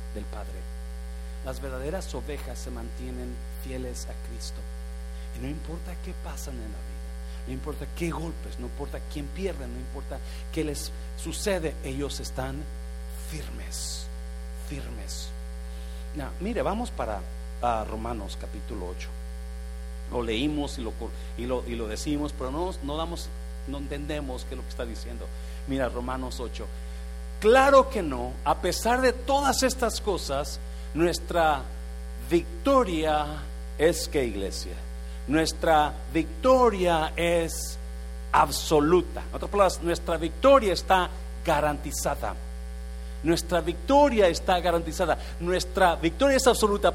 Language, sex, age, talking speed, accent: Spanish, male, 50-69, 130 wpm, Mexican